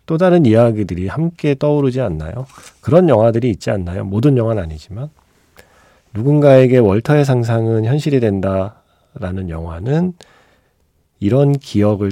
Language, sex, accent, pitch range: Korean, male, native, 90-135 Hz